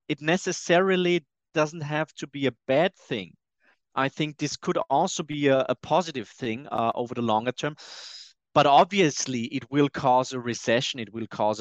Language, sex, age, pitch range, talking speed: English, male, 30-49, 120-145 Hz, 175 wpm